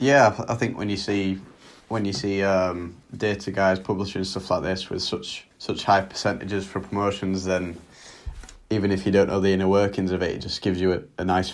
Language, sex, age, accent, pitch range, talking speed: English, male, 20-39, British, 95-100 Hz, 215 wpm